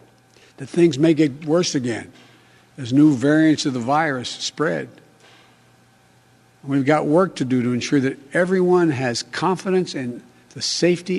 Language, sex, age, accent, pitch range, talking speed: English, male, 60-79, American, 135-175 Hz, 145 wpm